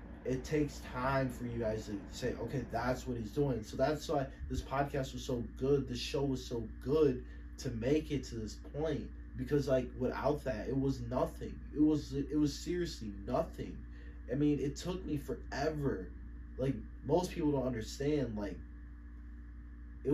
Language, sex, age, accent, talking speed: English, male, 20-39, American, 175 wpm